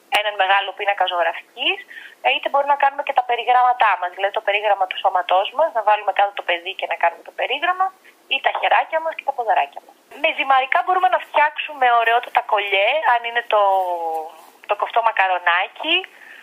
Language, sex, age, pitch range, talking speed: Greek, female, 20-39, 195-260 Hz, 180 wpm